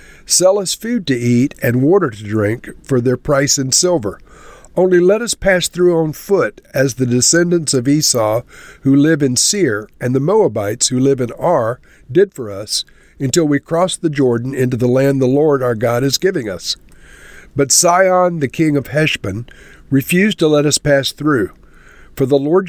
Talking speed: 185 wpm